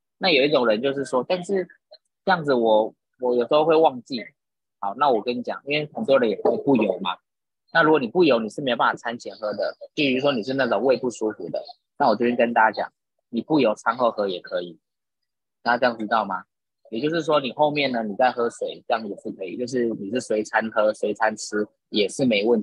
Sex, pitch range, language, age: male, 115-150 Hz, Chinese, 20-39